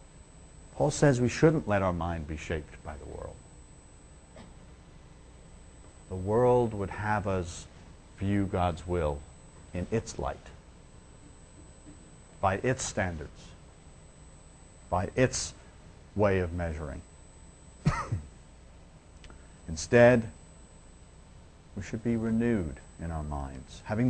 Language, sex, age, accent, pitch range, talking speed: English, male, 60-79, American, 80-115 Hz, 100 wpm